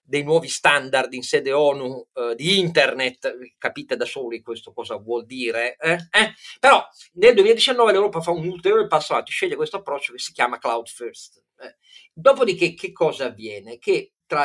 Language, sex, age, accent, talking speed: Italian, male, 40-59, native, 175 wpm